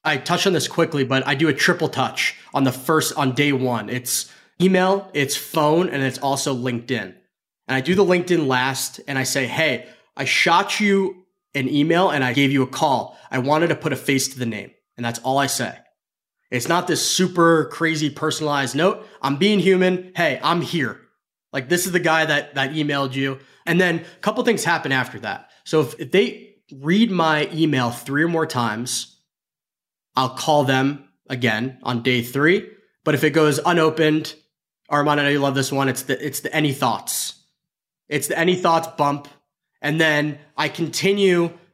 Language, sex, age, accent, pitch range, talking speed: English, male, 20-39, American, 135-170 Hz, 190 wpm